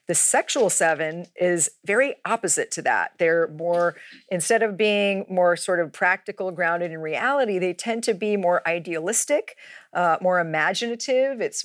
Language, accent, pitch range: English, American, 160-215 Hz